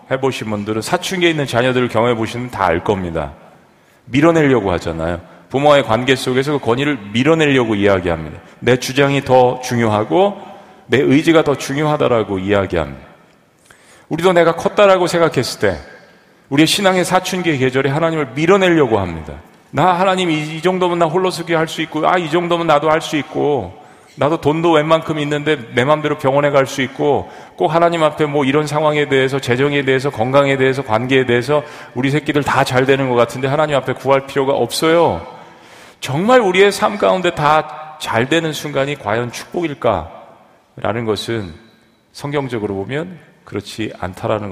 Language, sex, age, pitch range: Korean, male, 40-59, 110-155 Hz